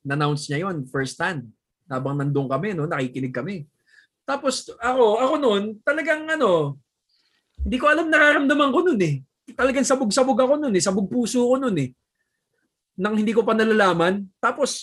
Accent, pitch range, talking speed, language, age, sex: native, 135-215 Hz, 160 wpm, Filipino, 20-39, male